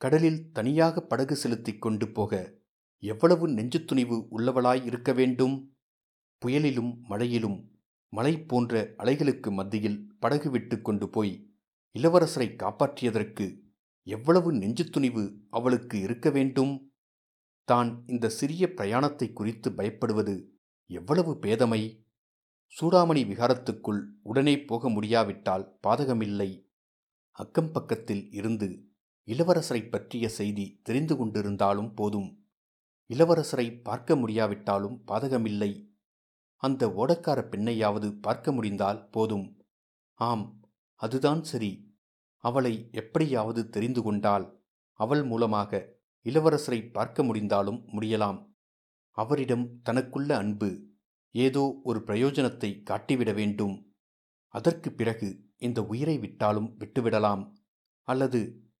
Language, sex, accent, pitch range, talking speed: Tamil, male, native, 105-135 Hz, 90 wpm